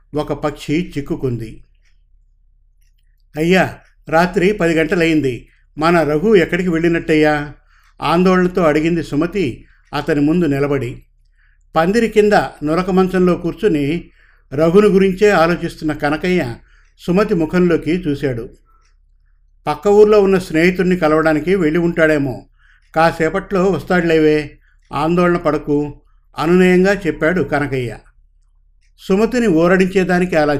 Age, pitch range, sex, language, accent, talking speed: 50-69, 135-175 Hz, male, Telugu, native, 90 wpm